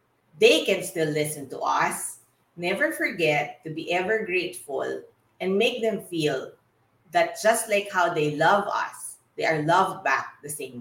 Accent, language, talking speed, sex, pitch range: Filipino, English, 160 wpm, female, 150-205 Hz